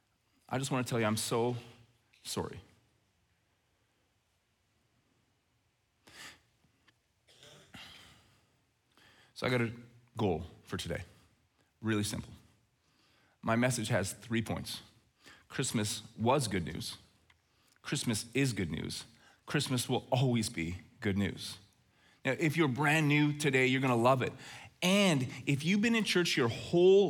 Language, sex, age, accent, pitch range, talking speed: English, male, 30-49, American, 110-150 Hz, 120 wpm